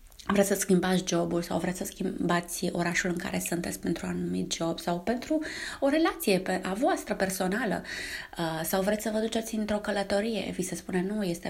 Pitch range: 185-265 Hz